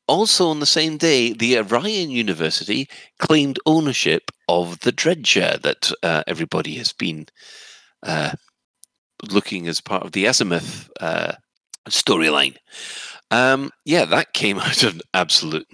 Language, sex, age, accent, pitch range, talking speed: English, male, 40-59, British, 85-130 Hz, 125 wpm